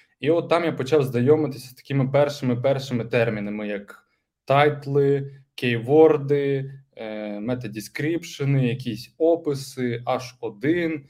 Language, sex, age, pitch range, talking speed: Ukrainian, male, 20-39, 120-155 Hz, 95 wpm